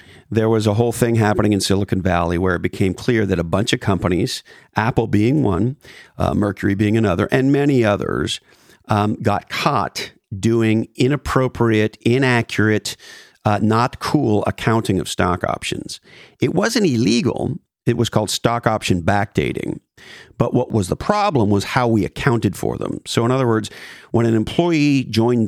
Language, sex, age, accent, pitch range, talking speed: English, male, 50-69, American, 100-120 Hz, 160 wpm